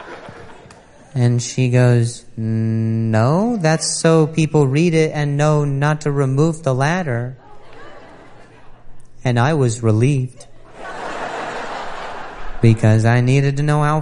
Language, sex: English, male